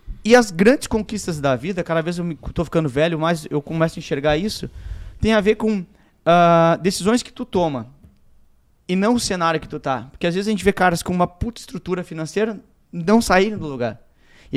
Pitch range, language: 140-175 Hz, Portuguese